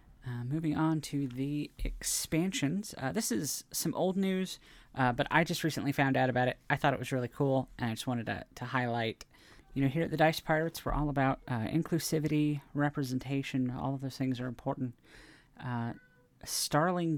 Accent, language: American, English